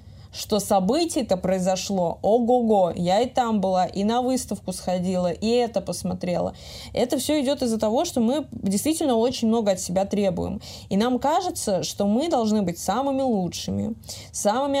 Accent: native